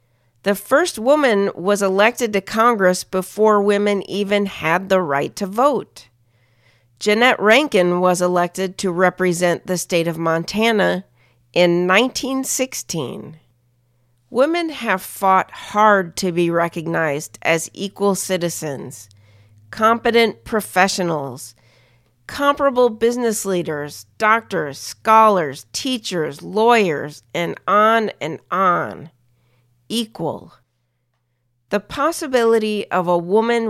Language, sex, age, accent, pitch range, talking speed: English, female, 40-59, American, 155-220 Hz, 100 wpm